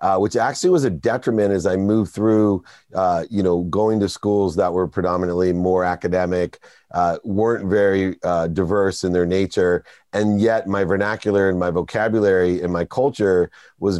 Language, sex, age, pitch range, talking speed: English, male, 40-59, 95-110 Hz, 170 wpm